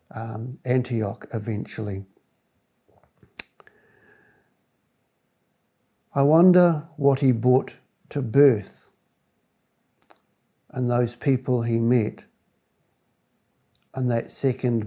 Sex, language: male, English